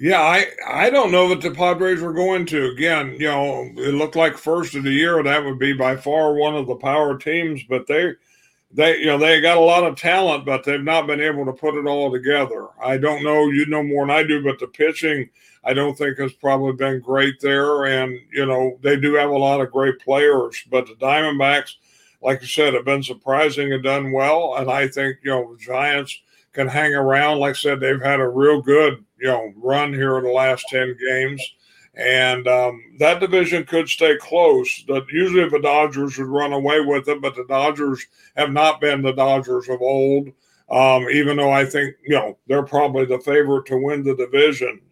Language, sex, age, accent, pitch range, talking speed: English, male, 50-69, American, 135-155 Hz, 220 wpm